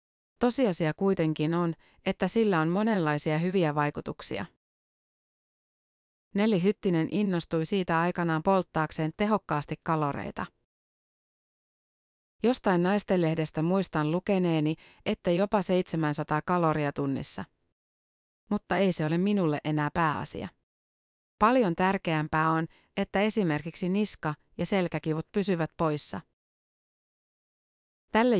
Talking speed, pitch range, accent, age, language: 95 wpm, 155-190 Hz, native, 30-49, Finnish